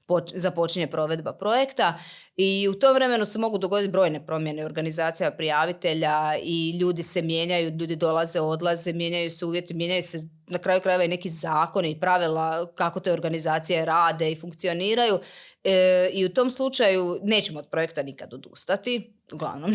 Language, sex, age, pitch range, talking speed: Croatian, female, 30-49, 165-195 Hz, 160 wpm